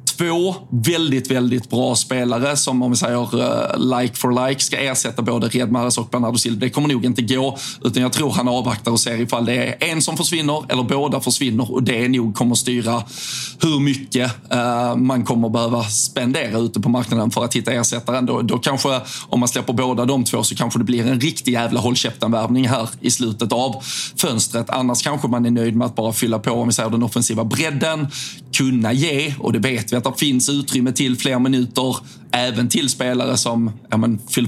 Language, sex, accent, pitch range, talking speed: Swedish, male, native, 120-135 Hz, 195 wpm